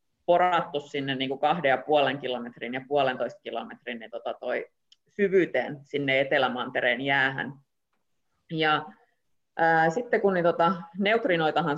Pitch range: 140-175 Hz